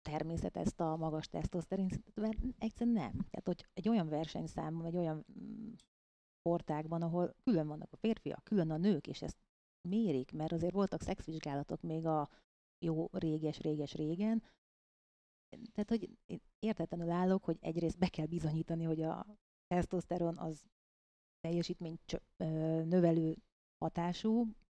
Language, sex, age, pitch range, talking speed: Hungarian, female, 30-49, 160-195 Hz, 130 wpm